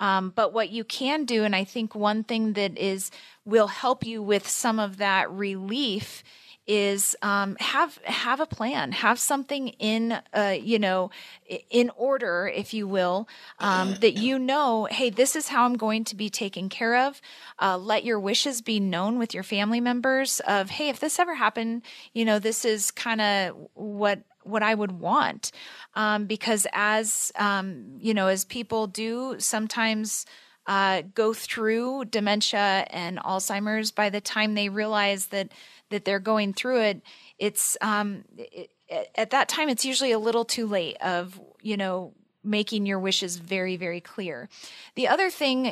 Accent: American